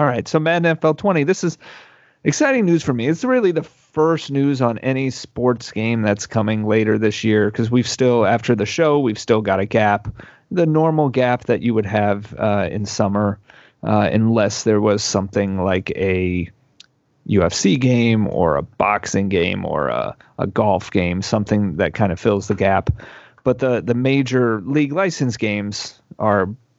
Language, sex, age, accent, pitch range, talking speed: English, male, 30-49, American, 105-135 Hz, 180 wpm